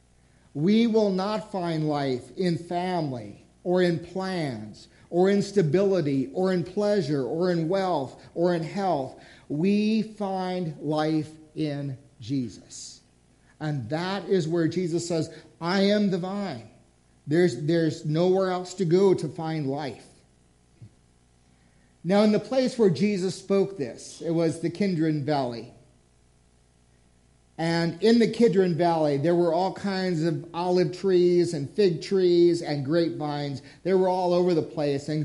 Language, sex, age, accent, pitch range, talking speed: English, male, 50-69, American, 150-185 Hz, 140 wpm